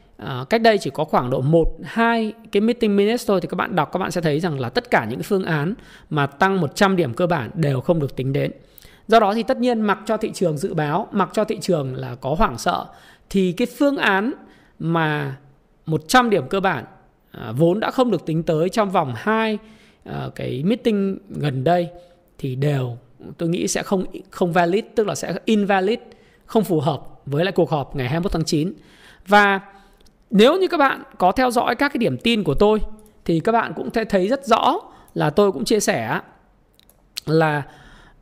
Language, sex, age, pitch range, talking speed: Vietnamese, male, 20-39, 160-220 Hz, 210 wpm